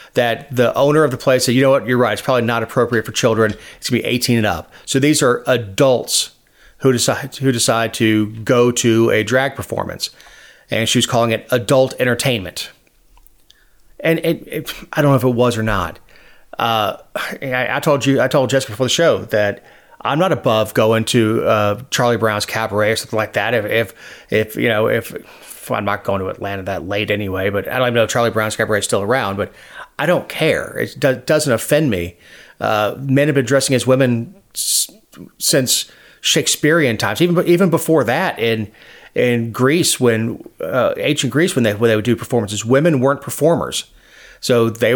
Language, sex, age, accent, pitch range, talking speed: English, male, 30-49, American, 110-135 Hz, 200 wpm